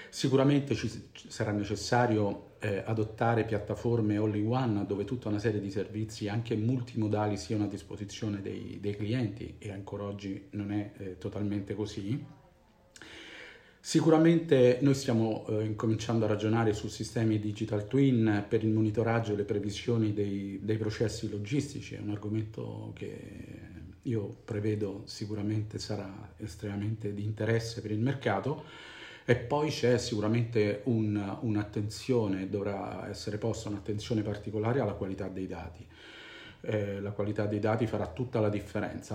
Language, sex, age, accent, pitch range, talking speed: Italian, male, 40-59, native, 100-115 Hz, 140 wpm